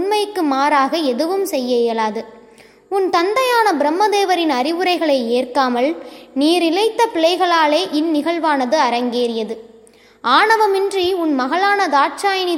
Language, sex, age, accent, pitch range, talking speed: Tamil, female, 20-39, native, 265-360 Hz, 85 wpm